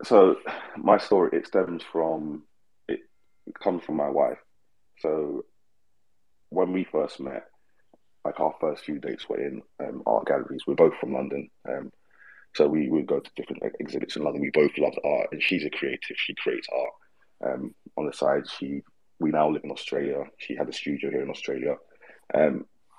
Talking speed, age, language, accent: 180 wpm, 30-49, English, British